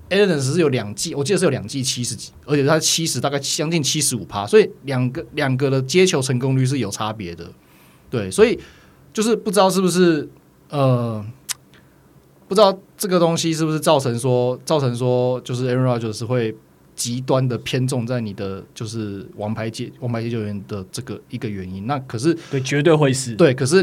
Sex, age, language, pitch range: male, 20-39, Chinese, 120-165 Hz